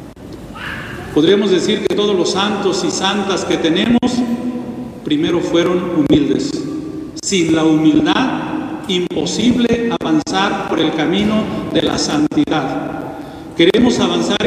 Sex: male